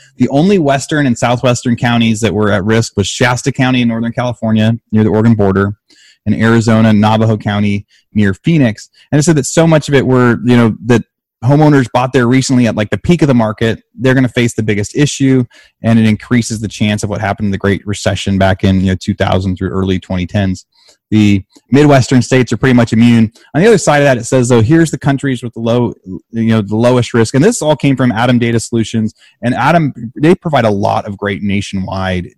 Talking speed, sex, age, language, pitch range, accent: 220 wpm, male, 30-49, English, 105-130 Hz, American